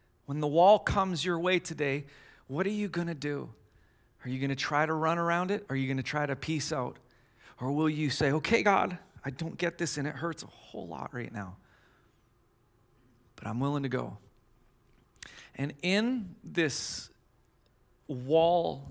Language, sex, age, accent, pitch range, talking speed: English, male, 40-59, American, 125-160 Hz, 180 wpm